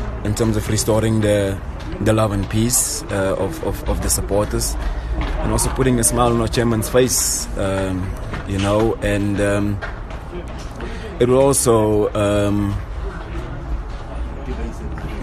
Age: 20-39